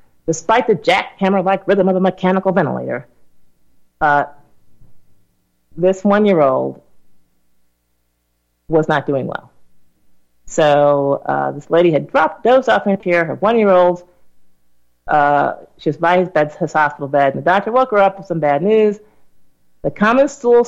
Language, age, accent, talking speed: English, 40-59, American, 140 wpm